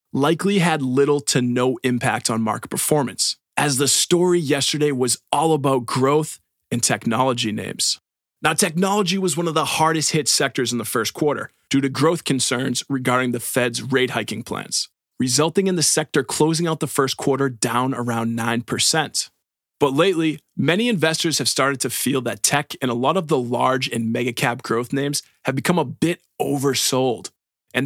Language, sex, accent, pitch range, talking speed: English, male, American, 125-160 Hz, 170 wpm